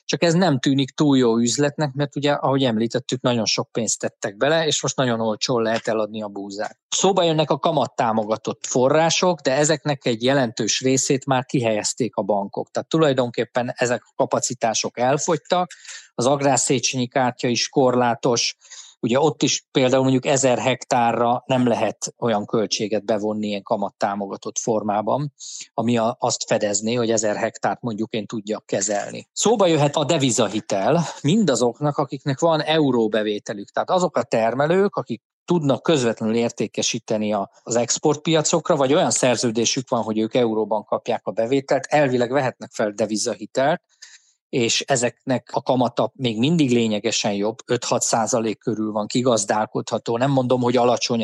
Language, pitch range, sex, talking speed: Hungarian, 115-145 Hz, male, 145 wpm